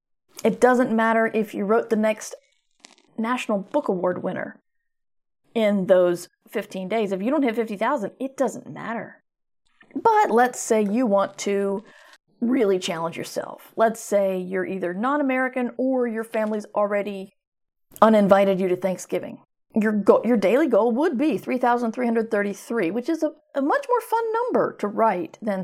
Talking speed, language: 150 wpm, English